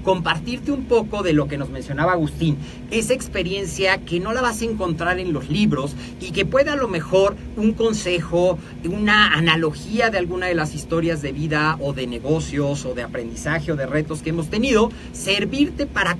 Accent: Mexican